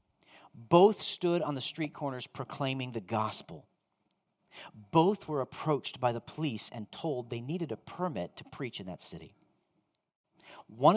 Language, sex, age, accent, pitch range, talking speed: English, male, 40-59, American, 130-190 Hz, 150 wpm